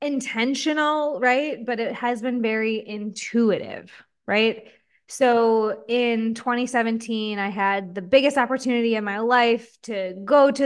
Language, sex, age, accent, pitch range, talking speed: English, female, 20-39, American, 210-255 Hz, 130 wpm